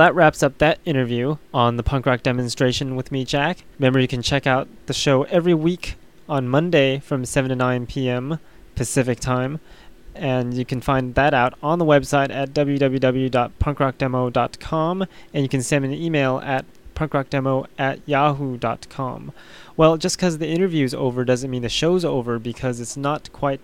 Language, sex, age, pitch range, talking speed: English, male, 20-39, 125-150 Hz, 175 wpm